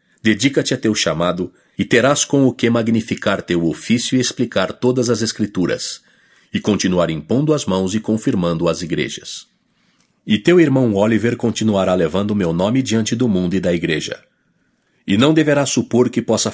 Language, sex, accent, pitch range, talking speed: English, male, Brazilian, 95-125 Hz, 165 wpm